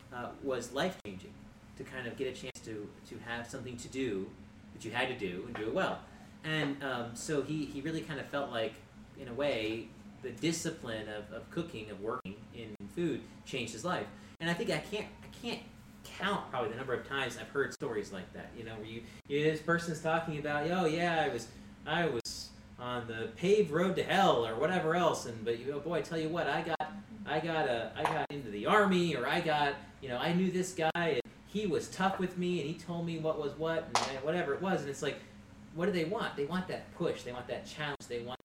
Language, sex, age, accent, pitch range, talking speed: English, male, 30-49, American, 110-155 Hz, 240 wpm